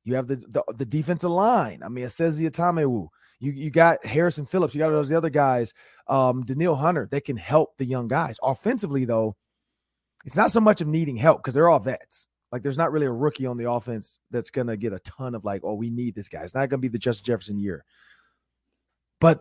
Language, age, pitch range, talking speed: English, 30-49, 120-155 Hz, 240 wpm